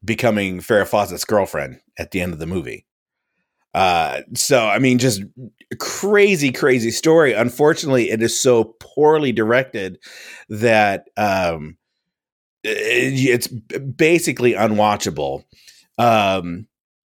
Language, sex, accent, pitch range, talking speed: English, male, American, 95-130 Hz, 105 wpm